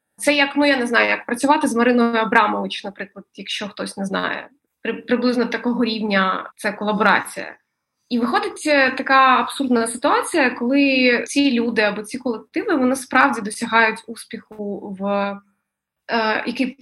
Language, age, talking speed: Ukrainian, 20-39, 140 wpm